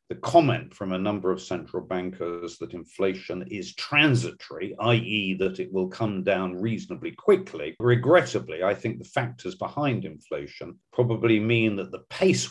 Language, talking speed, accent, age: English, 155 wpm, British, 50-69